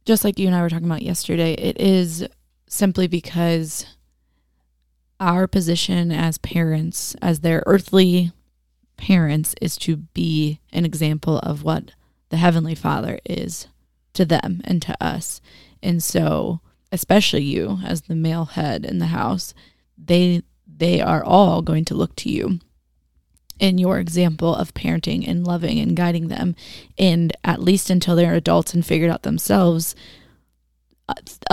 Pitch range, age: 155-180 Hz, 20-39